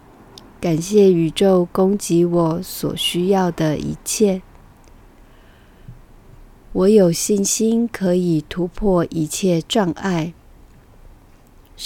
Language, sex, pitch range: Chinese, female, 165-195 Hz